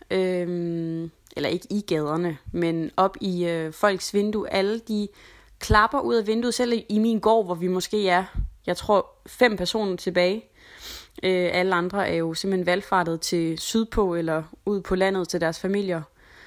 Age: 20-39